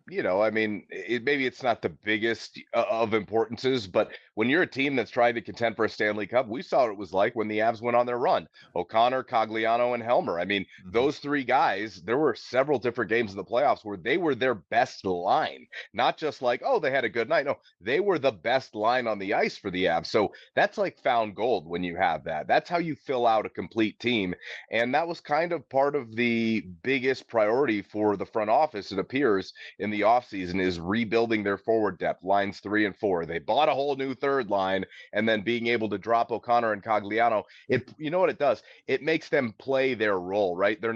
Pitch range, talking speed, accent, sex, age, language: 100-120 Hz, 230 wpm, American, male, 30-49, English